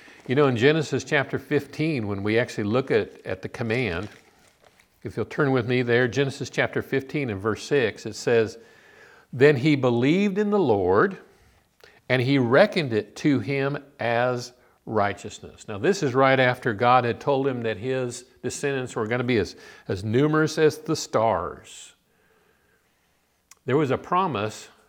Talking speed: 165 wpm